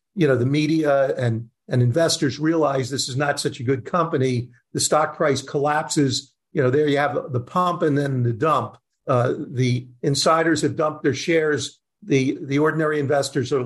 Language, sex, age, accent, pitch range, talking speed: English, male, 50-69, American, 125-155 Hz, 185 wpm